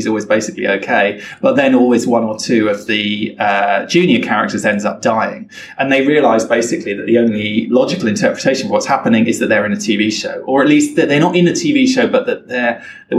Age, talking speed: 20-39, 230 wpm